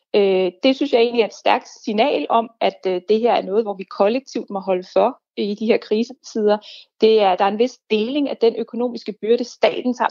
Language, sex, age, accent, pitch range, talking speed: Danish, female, 30-49, native, 200-245 Hz, 225 wpm